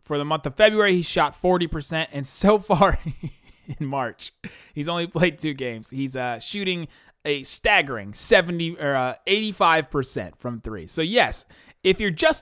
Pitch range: 130-185 Hz